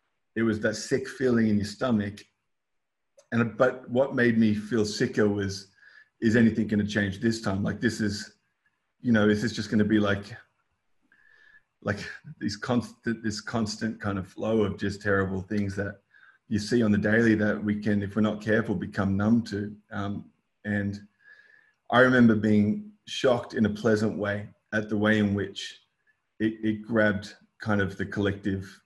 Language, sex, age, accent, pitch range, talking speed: English, male, 30-49, Australian, 100-110 Hz, 175 wpm